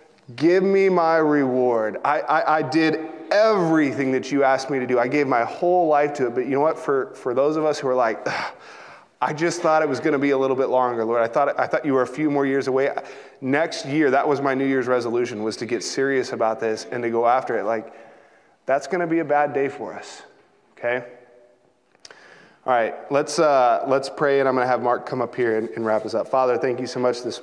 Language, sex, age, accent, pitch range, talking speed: English, male, 20-39, American, 115-135 Hz, 250 wpm